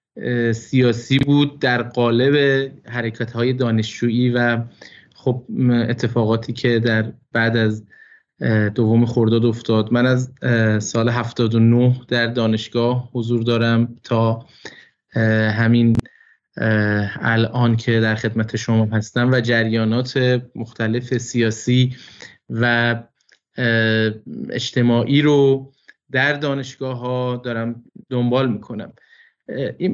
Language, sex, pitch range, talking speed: Persian, male, 115-135 Hz, 90 wpm